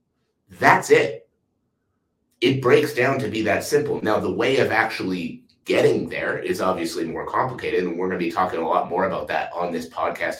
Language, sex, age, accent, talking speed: English, male, 30-49, American, 195 wpm